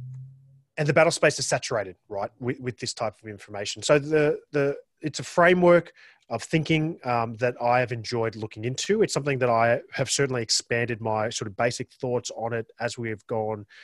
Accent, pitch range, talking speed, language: Australian, 110-135 Hz, 200 wpm, English